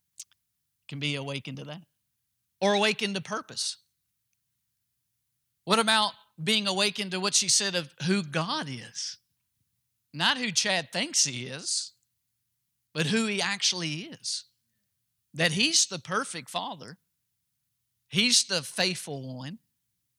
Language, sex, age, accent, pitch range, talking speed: English, male, 50-69, American, 125-185 Hz, 120 wpm